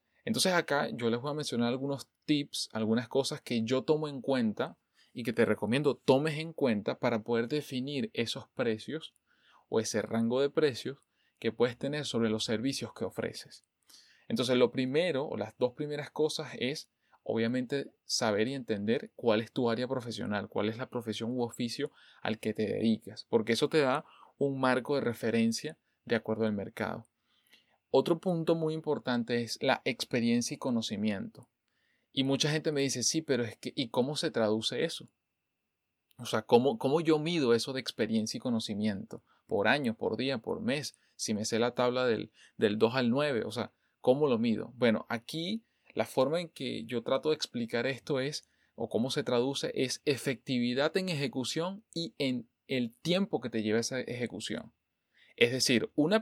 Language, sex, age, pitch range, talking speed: Spanish, male, 20-39, 115-150 Hz, 180 wpm